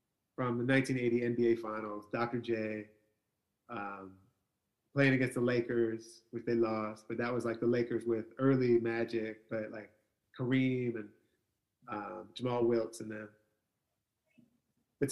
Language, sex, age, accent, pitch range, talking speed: English, male, 30-49, American, 110-125 Hz, 135 wpm